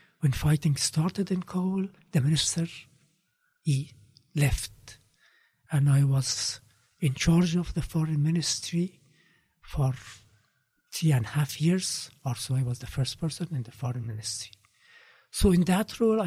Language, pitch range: Arabic, 130-175 Hz